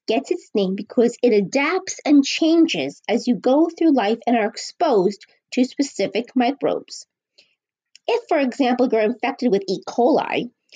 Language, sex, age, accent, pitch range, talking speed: English, female, 30-49, American, 195-275 Hz, 150 wpm